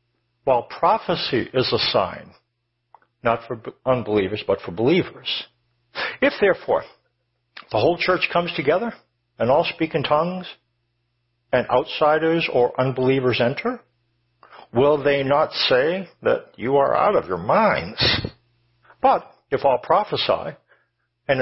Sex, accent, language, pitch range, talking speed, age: male, American, English, 120-150 Hz, 125 wpm, 60-79